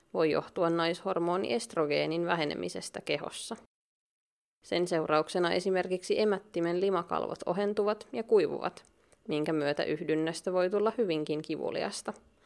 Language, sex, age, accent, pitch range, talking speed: Finnish, female, 20-39, native, 165-200 Hz, 100 wpm